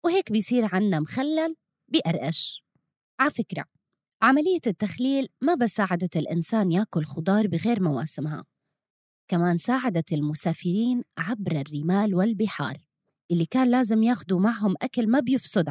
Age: 20-39